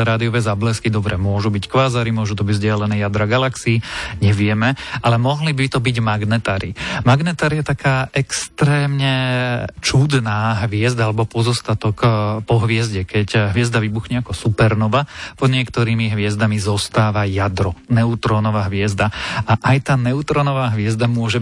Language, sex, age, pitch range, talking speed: Slovak, male, 30-49, 105-120 Hz, 130 wpm